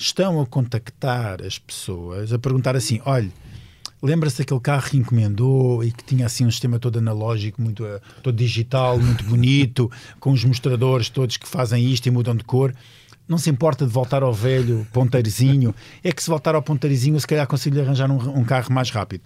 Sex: male